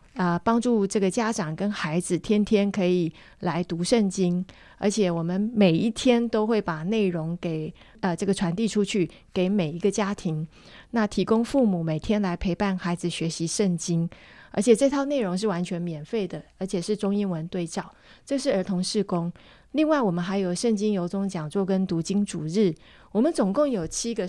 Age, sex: 30-49, female